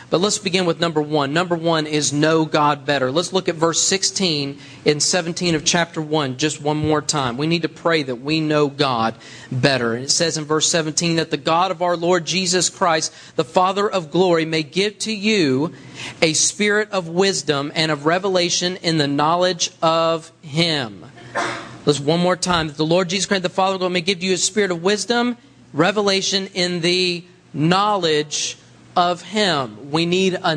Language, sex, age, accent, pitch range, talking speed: English, male, 40-59, American, 155-190 Hz, 190 wpm